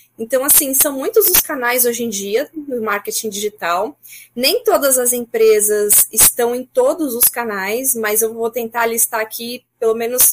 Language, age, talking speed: Portuguese, 20-39, 170 wpm